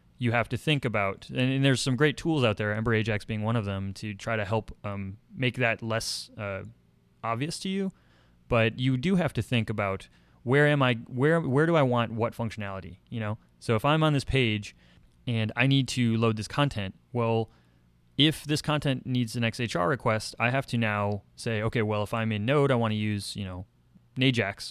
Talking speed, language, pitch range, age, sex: 215 wpm, English, 105-125 Hz, 20-39, male